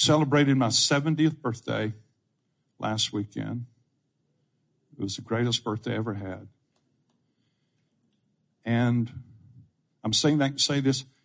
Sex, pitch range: male, 115-145 Hz